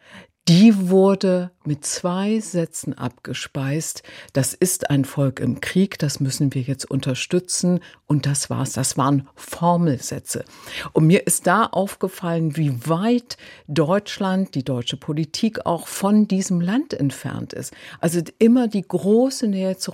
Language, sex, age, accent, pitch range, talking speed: German, female, 50-69, German, 140-185 Hz, 140 wpm